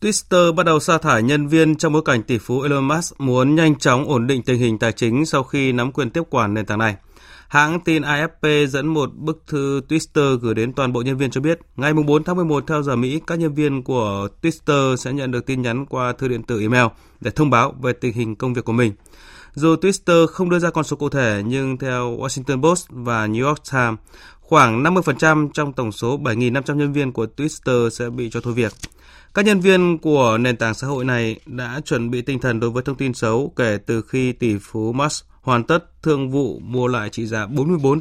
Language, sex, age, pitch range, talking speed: Vietnamese, male, 20-39, 115-150 Hz, 230 wpm